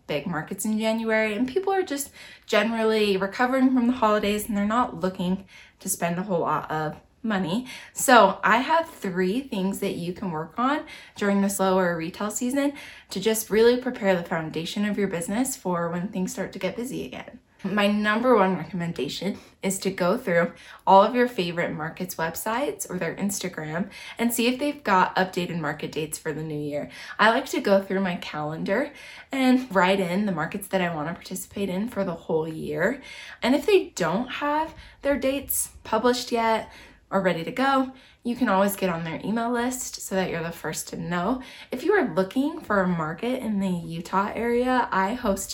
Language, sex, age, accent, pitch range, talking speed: English, female, 20-39, American, 180-235 Hz, 190 wpm